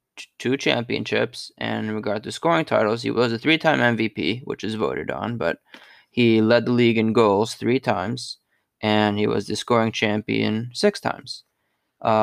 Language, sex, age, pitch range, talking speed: English, male, 20-39, 110-125 Hz, 170 wpm